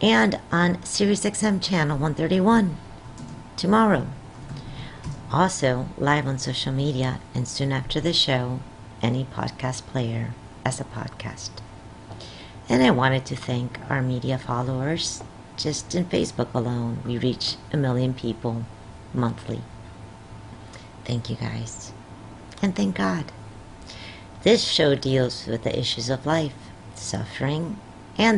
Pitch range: 110-140 Hz